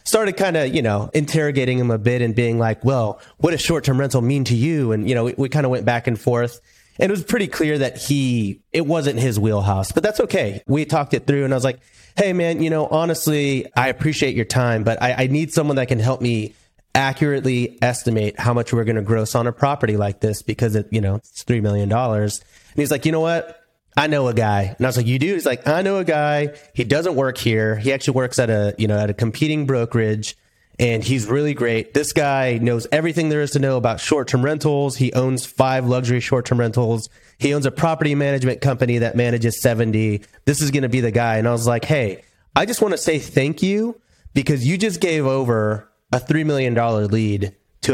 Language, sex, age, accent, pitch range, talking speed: English, male, 30-49, American, 115-145 Hz, 235 wpm